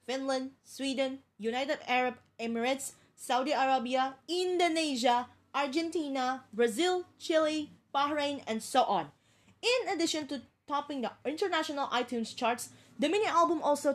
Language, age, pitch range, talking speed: English, 20-39, 200-290 Hz, 110 wpm